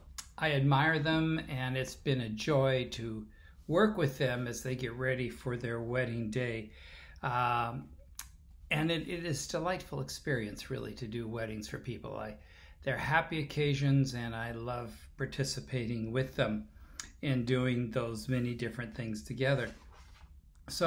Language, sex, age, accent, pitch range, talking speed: English, male, 60-79, American, 115-145 Hz, 145 wpm